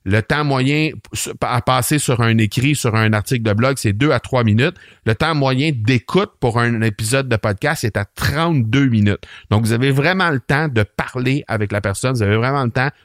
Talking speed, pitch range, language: 215 wpm, 110-145 Hz, French